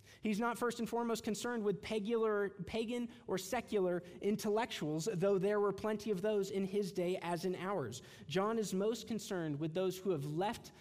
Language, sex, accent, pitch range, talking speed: English, male, American, 140-205 Hz, 180 wpm